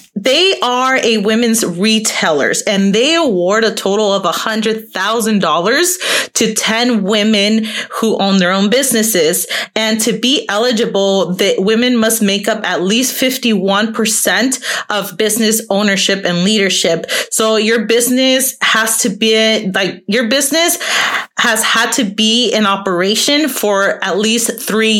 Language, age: English, 30-49